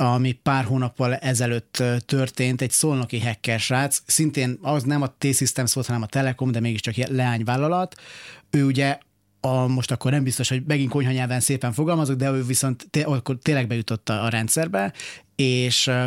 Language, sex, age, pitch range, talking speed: Hungarian, male, 30-49, 120-140 Hz, 165 wpm